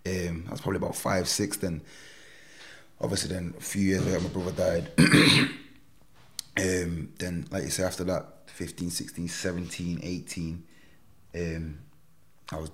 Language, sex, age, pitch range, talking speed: English, male, 20-39, 80-95 Hz, 145 wpm